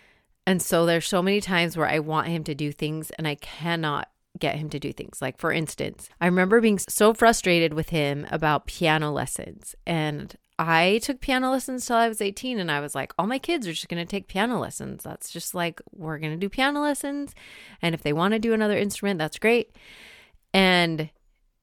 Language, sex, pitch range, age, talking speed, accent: English, female, 155-200 Hz, 30-49, 215 wpm, American